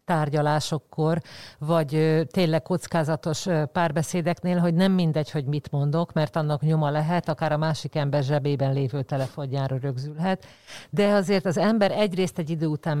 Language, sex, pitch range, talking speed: Hungarian, female, 150-180 Hz, 145 wpm